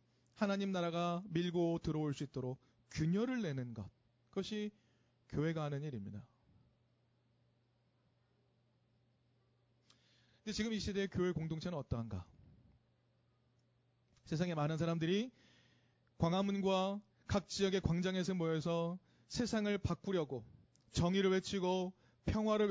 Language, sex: Korean, male